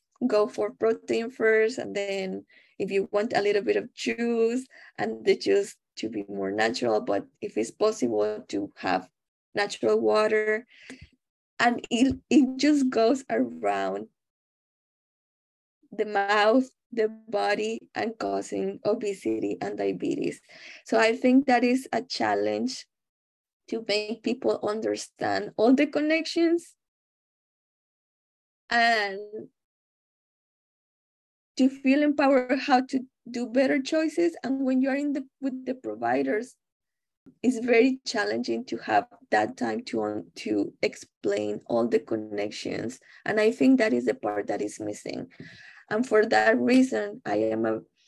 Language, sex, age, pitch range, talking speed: English, female, 10-29, 195-260 Hz, 130 wpm